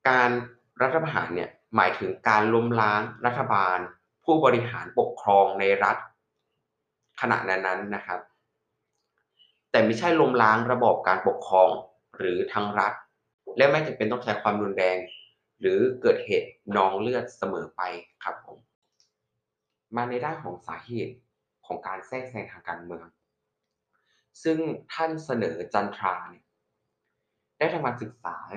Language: Thai